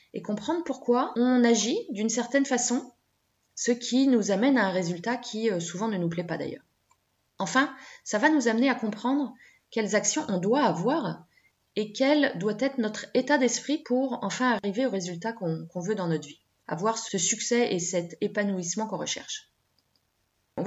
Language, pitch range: French, 175-240 Hz